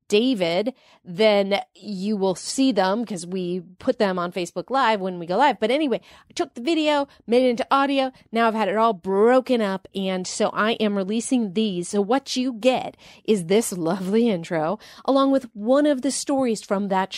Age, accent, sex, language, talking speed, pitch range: 40-59, American, female, English, 195 wpm, 180-245 Hz